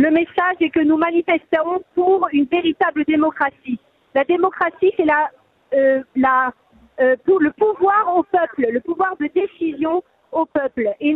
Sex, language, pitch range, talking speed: female, French, 295-370 Hz, 155 wpm